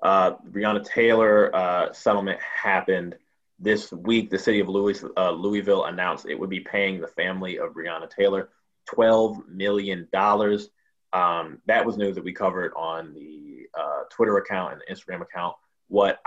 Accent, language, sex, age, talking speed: American, English, male, 20-39, 160 wpm